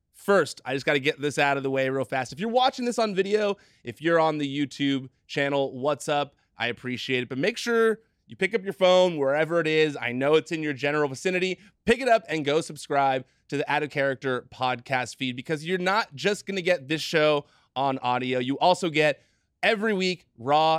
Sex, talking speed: male, 220 wpm